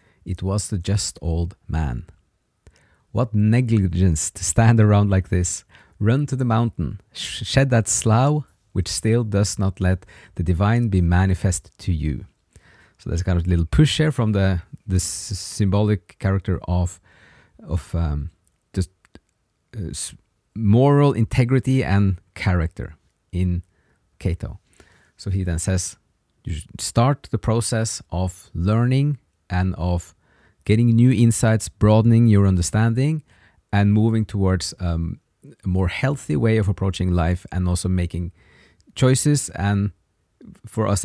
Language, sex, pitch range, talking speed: English, male, 90-115 Hz, 140 wpm